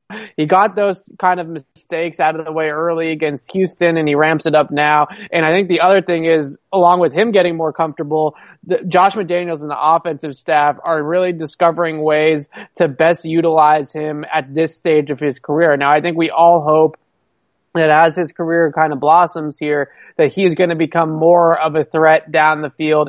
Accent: American